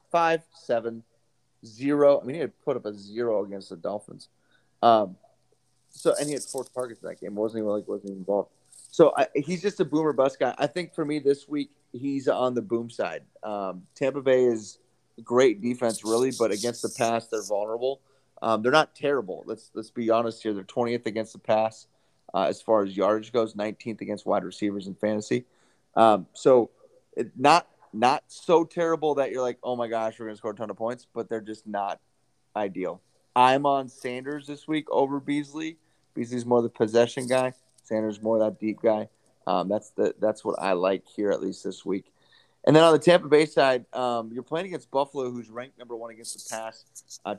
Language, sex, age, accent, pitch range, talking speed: English, male, 30-49, American, 110-135 Hz, 205 wpm